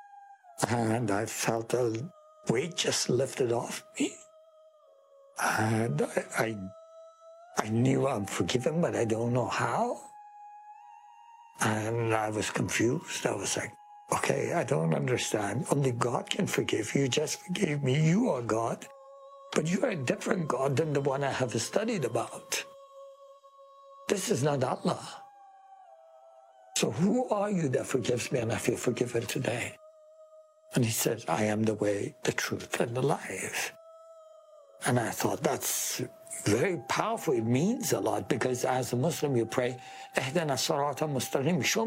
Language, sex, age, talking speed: English, male, 60-79, 145 wpm